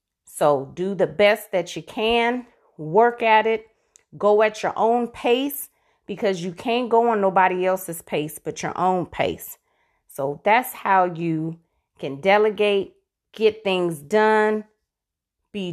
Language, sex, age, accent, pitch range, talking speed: English, female, 30-49, American, 175-220 Hz, 140 wpm